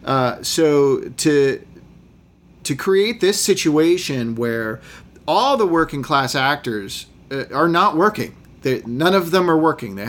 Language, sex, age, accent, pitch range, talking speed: English, male, 40-59, American, 125-160 Hz, 145 wpm